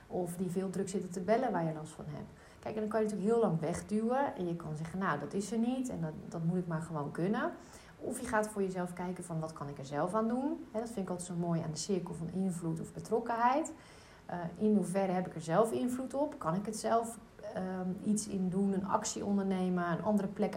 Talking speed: 260 wpm